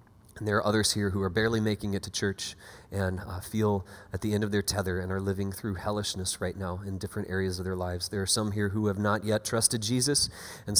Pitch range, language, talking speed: 100-135 Hz, English, 250 wpm